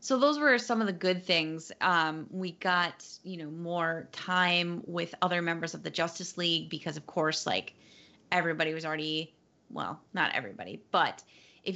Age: 30-49